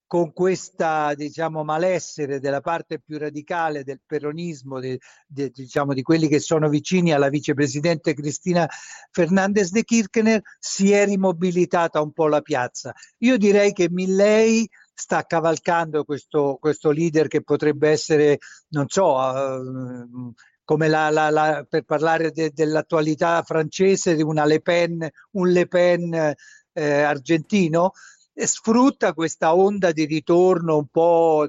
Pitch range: 150-185 Hz